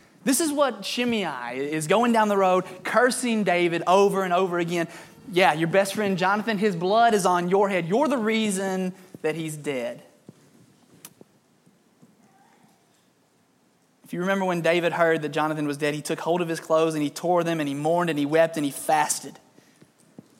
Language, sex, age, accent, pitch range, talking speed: English, male, 20-39, American, 165-225 Hz, 180 wpm